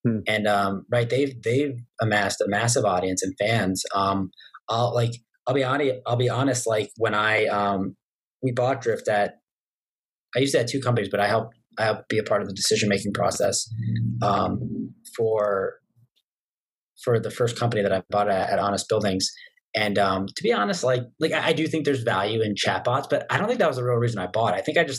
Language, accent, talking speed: English, American, 210 wpm